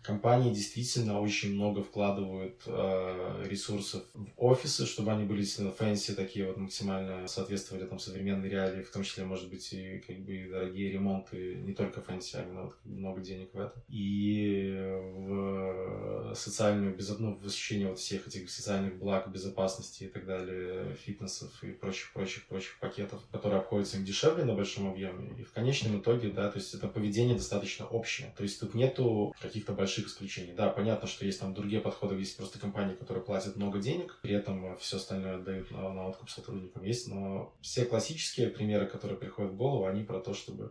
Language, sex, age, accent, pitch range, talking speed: Russian, male, 20-39, native, 95-115 Hz, 185 wpm